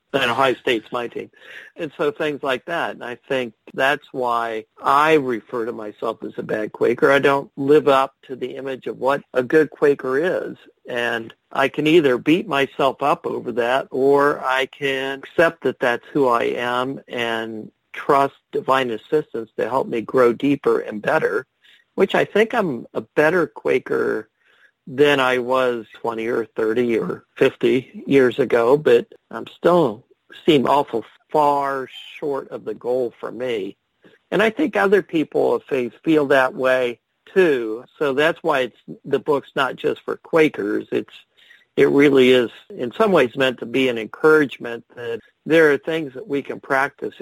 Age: 50-69